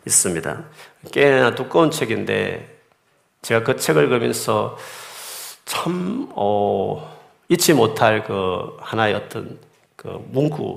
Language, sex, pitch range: Korean, male, 110-150 Hz